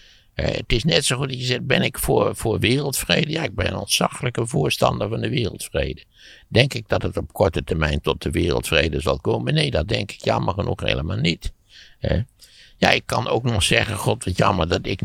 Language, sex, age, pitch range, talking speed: Dutch, male, 60-79, 85-130 Hz, 220 wpm